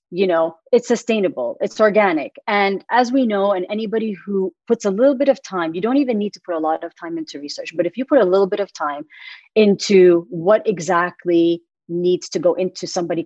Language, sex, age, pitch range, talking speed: English, female, 30-49, 180-225 Hz, 215 wpm